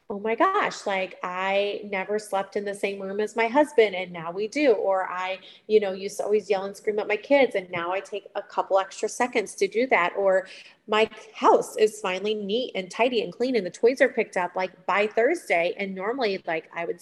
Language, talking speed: English, 235 wpm